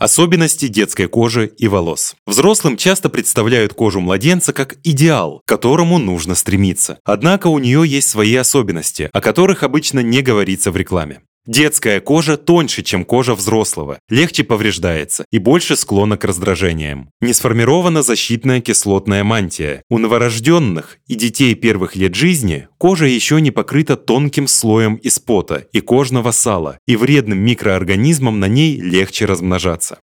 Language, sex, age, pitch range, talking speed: Russian, male, 20-39, 100-140 Hz, 145 wpm